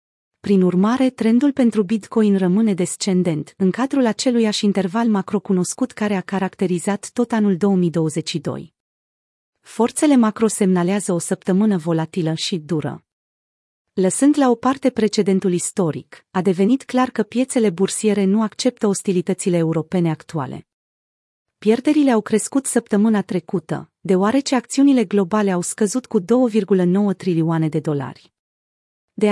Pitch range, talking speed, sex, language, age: 180-225 Hz, 120 wpm, female, Romanian, 30-49